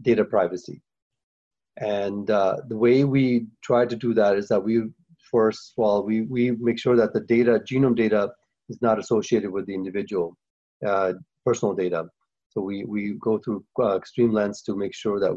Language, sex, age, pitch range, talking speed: English, male, 30-49, 100-115 Hz, 185 wpm